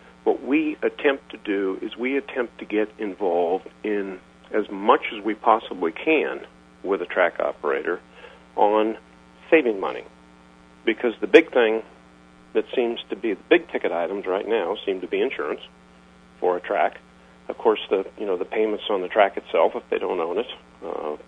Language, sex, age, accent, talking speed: English, male, 50-69, American, 175 wpm